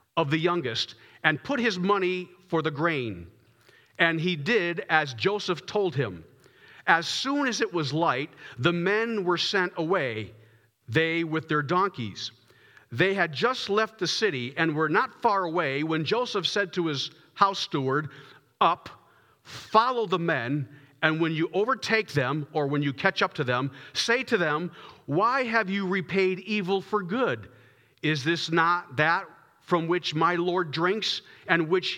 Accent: American